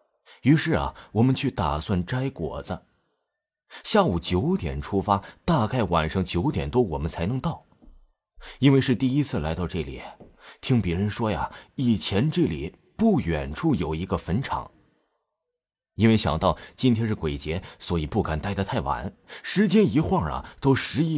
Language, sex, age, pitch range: Chinese, male, 30-49, 90-145 Hz